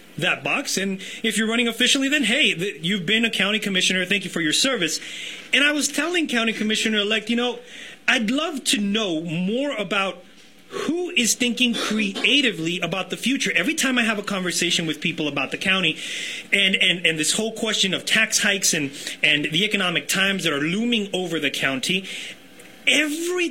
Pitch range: 170-250 Hz